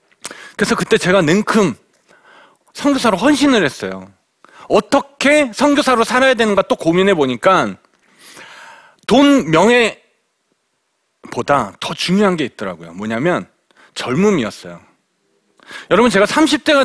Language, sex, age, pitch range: Korean, male, 40-59, 185-285 Hz